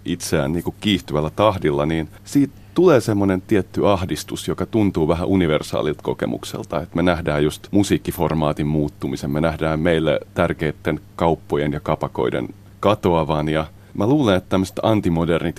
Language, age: Finnish, 30-49